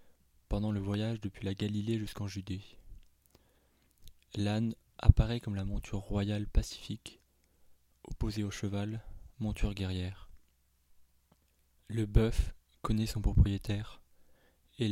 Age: 20-39